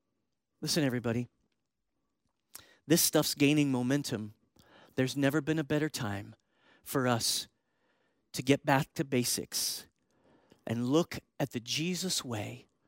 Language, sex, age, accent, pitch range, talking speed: English, male, 40-59, American, 140-210 Hz, 115 wpm